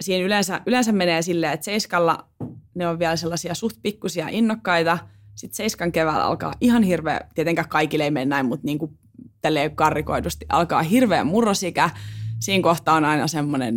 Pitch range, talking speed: 145-170 Hz, 165 wpm